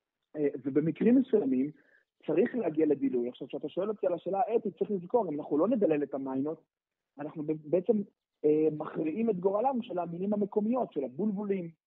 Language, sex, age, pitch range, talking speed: Hebrew, male, 30-49, 140-200 Hz, 160 wpm